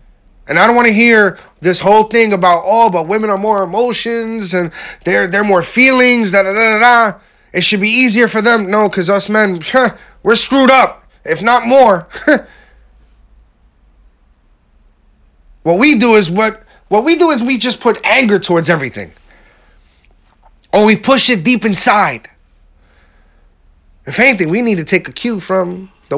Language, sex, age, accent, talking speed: English, male, 30-49, American, 170 wpm